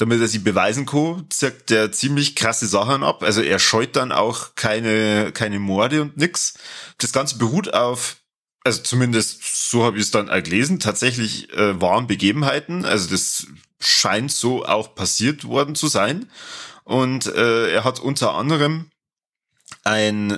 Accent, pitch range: German, 100-135 Hz